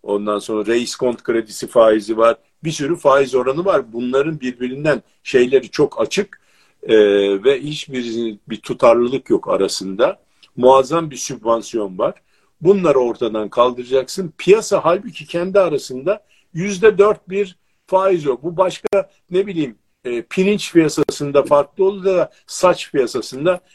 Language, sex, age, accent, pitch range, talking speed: Turkish, male, 50-69, native, 135-195 Hz, 130 wpm